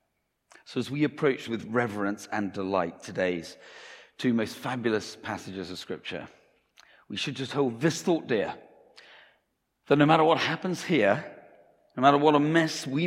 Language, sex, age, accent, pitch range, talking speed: English, male, 50-69, British, 100-135 Hz, 155 wpm